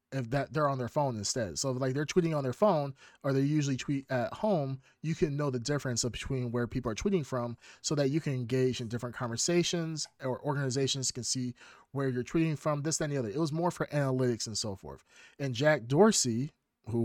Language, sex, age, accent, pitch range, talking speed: English, male, 30-49, American, 120-150 Hz, 220 wpm